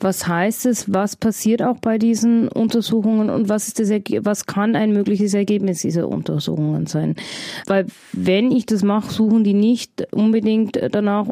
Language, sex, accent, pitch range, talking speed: German, female, German, 185-215 Hz, 165 wpm